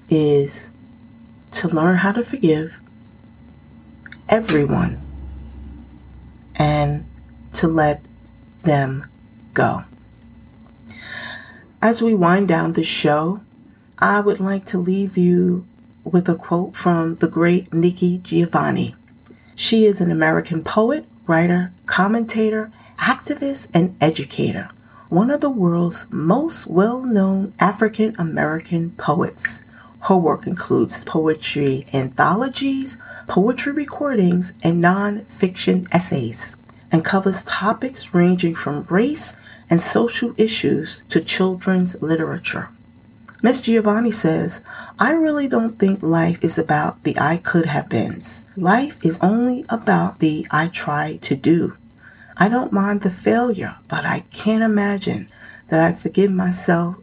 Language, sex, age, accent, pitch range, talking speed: English, female, 40-59, American, 145-205 Hz, 115 wpm